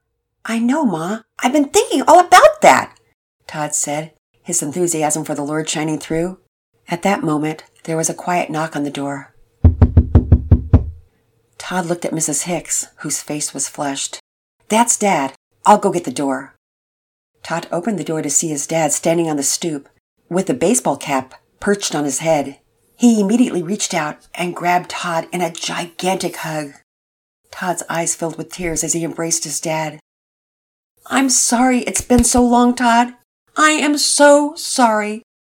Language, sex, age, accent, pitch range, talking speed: English, female, 50-69, American, 150-225 Hz, 165 wpm